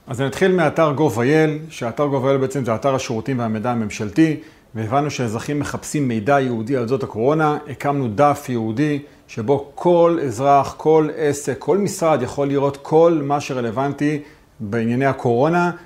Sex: male